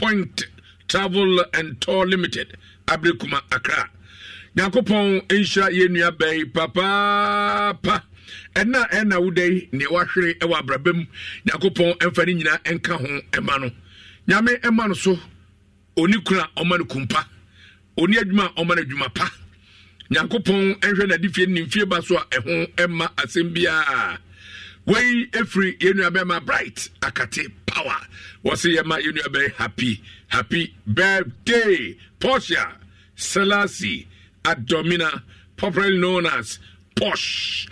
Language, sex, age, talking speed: English, male, 60-79, 120 wpm